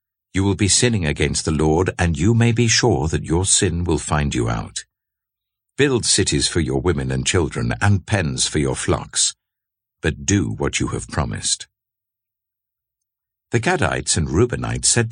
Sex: male